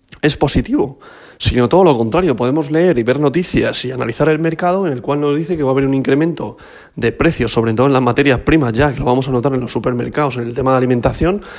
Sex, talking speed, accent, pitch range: male, 250 wpm, Spanish, 120-150 Hz